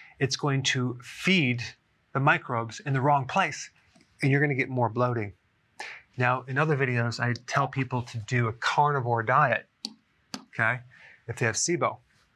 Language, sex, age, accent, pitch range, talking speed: English, male, 30-49, American, 120-150 Hz, 165 wpm